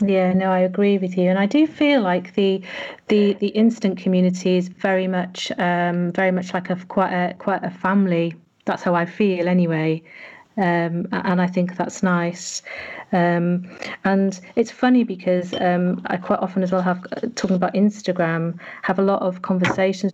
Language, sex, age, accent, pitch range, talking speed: English, female, 40-59, British, 180-200 Hz, 180 wpm